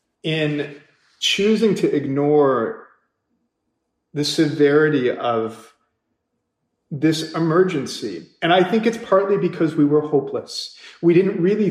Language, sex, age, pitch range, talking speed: English, male, 40-59, 135-175 Hz, 110 wpm